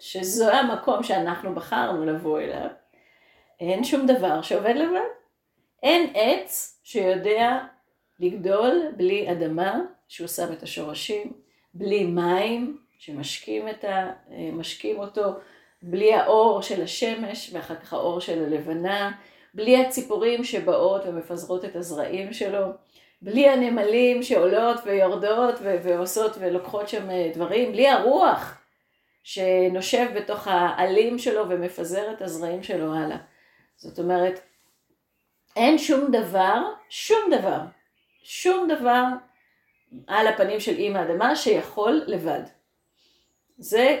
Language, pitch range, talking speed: Hebrew, 180-255 Hz, 110 wpm